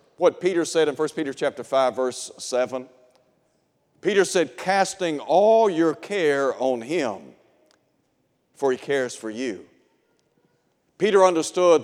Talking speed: 125 wpm